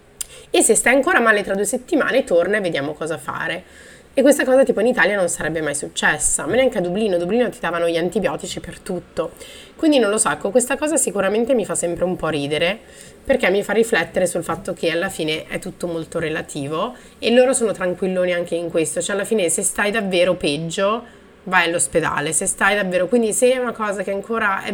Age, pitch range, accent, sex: 30-49, 175-255 Hz, native, female